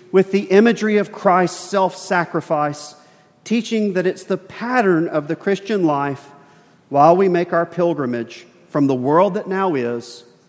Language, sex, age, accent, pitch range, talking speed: English, male, 40-59, American, 150-195 Hz, 150 wpm